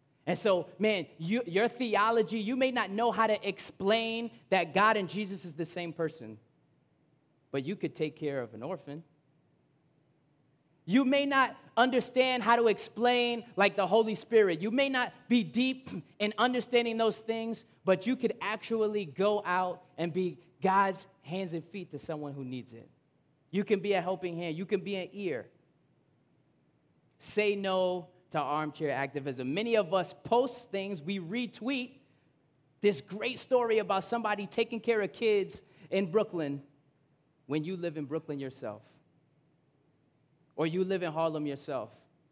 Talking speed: 155 wpm